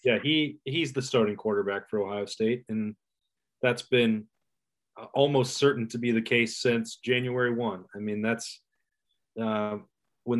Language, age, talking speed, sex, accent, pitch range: English, 20-39, 150 wpm, male, American, 115-135 Hz